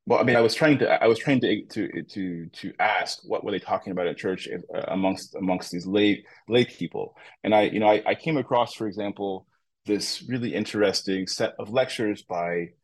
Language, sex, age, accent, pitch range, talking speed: English, male, 30-49, American, 90-110 Hz, 205 wpm